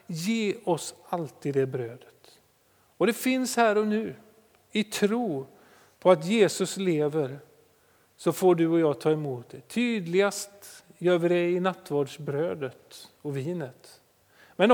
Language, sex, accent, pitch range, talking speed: Swedish, male, native, 135-180 Hz, 140 wpm